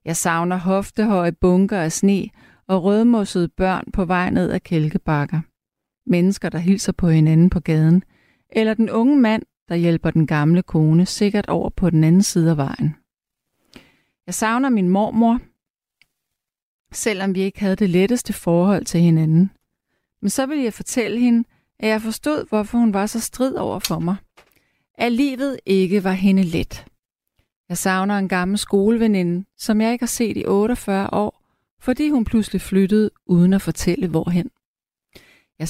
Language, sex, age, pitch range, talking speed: Danish, female, 30-49, 170-215 Hz, 160 wpm